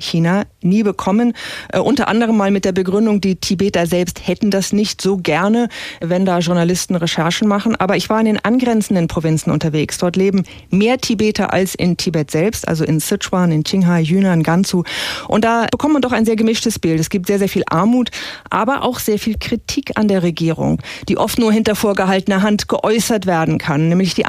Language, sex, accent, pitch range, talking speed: German, female, German, 175-215 Hz, 200 wpm